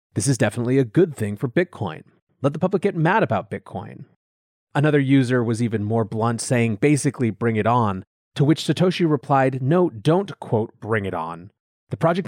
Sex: male